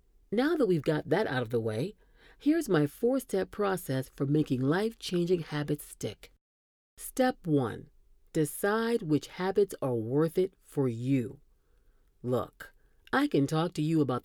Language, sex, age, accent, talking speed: English, female, 40-59, American, 145 wpm